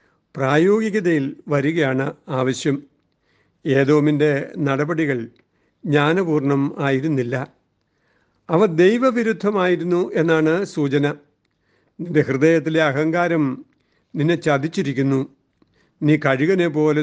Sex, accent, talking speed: male, native, 65 wpm